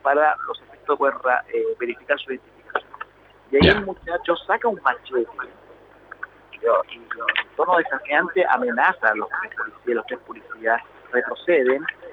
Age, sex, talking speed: 40-59, male, 145 wpm